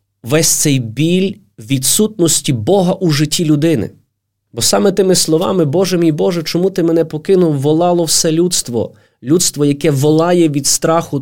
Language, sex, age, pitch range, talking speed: Ukrainian, male, 20-39, 125-165 Hz, 145 wpm